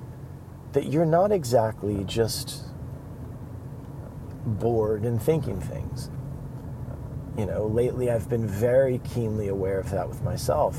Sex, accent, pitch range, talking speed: male, American, 110-135 Hz, 115 wpm